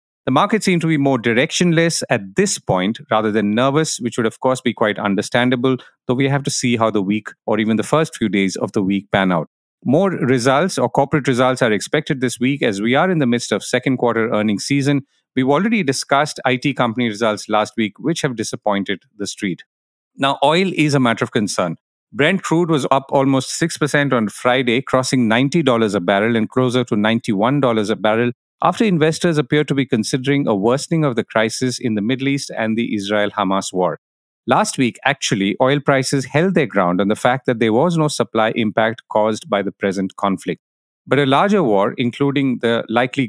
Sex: male